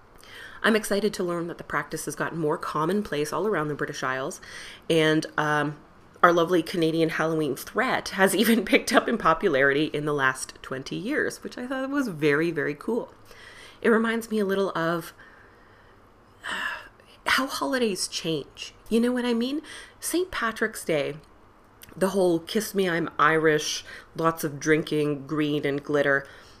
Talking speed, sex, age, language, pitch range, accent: 160 wpm, female, 30-49, English, 145-205 Hz, American